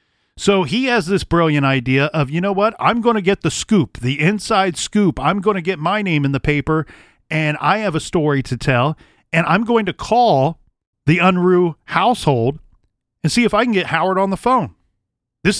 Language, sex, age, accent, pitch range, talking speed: English, male, 40-59, American, 130-185 Hz, 210 wpm